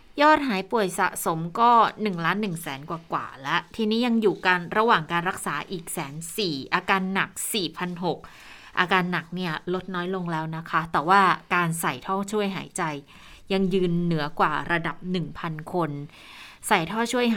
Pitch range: 170-205 Hz